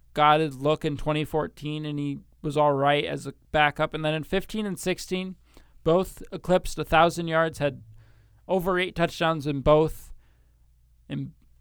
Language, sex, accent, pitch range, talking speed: English, male, American, 140-170 Hz, 155 wpm